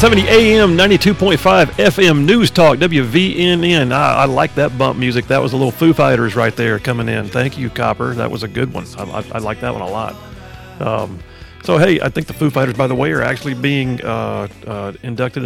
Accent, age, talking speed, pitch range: American, 40-59, 215 wpm, 120-155 Hz